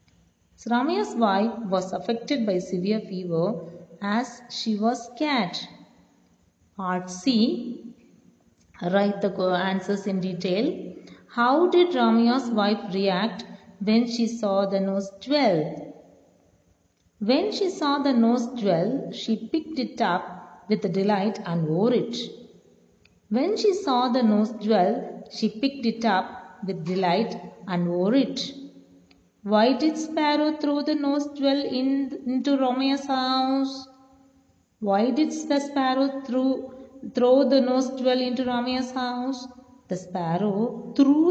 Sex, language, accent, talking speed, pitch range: female, Tamil, native, 125 wpm, 195-260 Hz